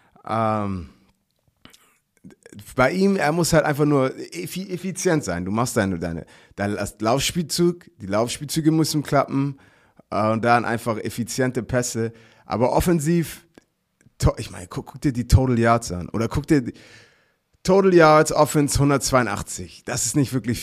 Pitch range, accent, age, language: 105-140 Hz, German, 30-49, German